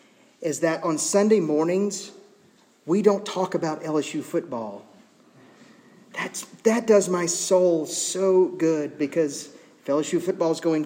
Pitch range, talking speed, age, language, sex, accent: 130-165 Hz, 125 wpm, 40-59, English, male, American